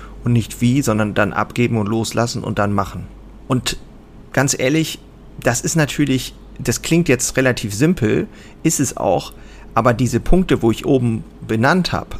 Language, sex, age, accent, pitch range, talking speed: German, male, 40-59, German, 105-140 Hz, 160 wpm